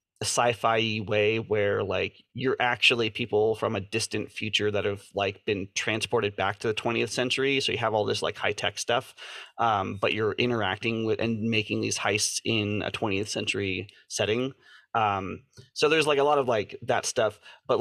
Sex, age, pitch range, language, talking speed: male, 30-49, 105-130 Hz, English, 190 wpm